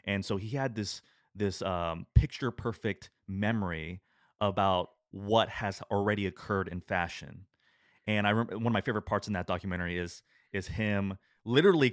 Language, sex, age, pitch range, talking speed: English, male, 30-49, 95-110 Hz, 155 wpm